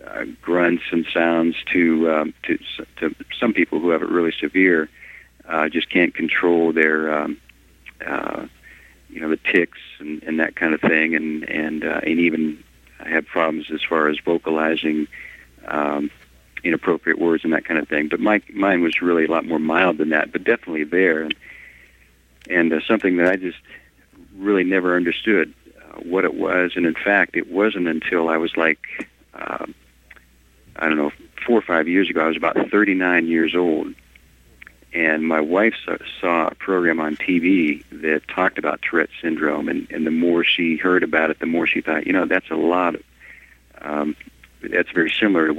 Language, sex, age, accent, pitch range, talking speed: English, male, 50-69, American, 75-85 Hz, 185 wpm